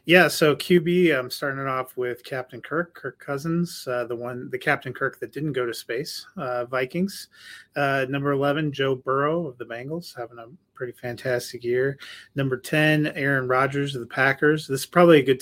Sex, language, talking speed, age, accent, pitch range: male, English, 200 wpm, 30-49, American, 125-140 Hz